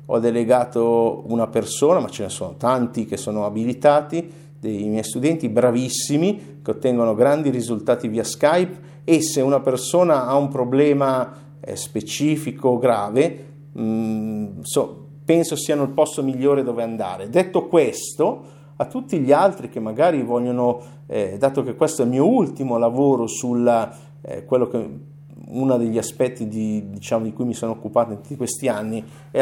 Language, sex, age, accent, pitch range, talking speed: Italian, male, 50-69, native, 115-145 Hz, 155 wpm